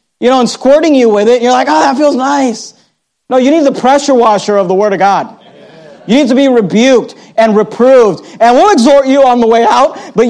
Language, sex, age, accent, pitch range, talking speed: English, male, 40-59, American, 205-280 Hz, 240 wpm